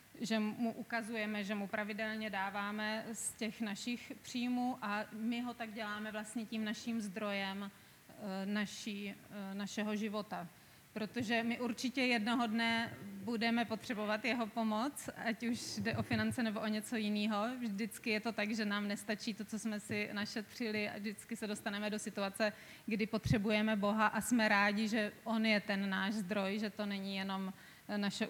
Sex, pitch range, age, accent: female, 205-230 Hz, 30-49, native